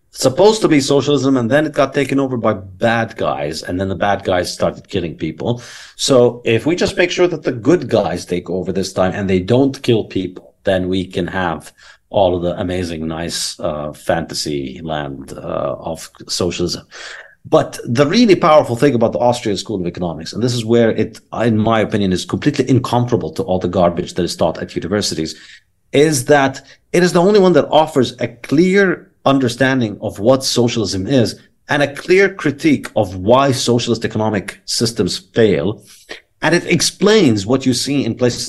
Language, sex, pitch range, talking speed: English, male, 95-130 Hz, 185 wpm